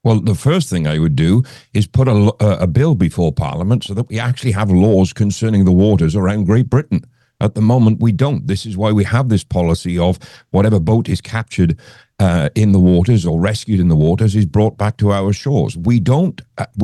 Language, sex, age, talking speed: English, male, 50-69, 215 wpm